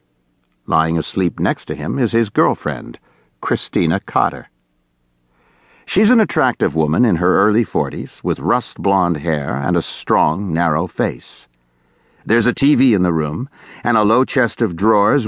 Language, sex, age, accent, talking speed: English, male, 60-79, American, 150 wpm